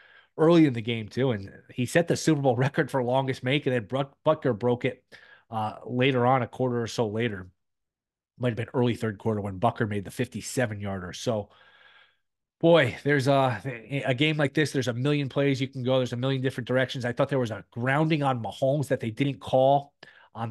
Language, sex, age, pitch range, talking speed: English, male, 30-49, 115-140 Hz, 215 wpm